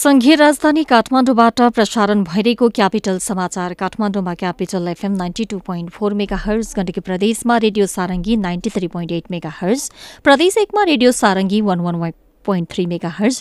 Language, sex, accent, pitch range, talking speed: English, female, Indian, 180-240 Hz, 105 wpm